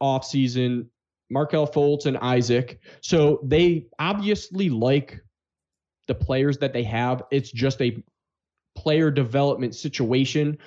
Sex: male